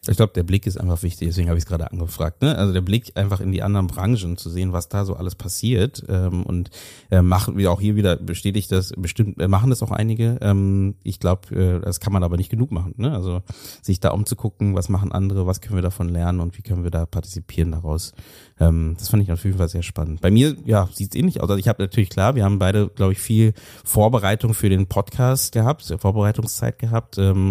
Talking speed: 240 wpm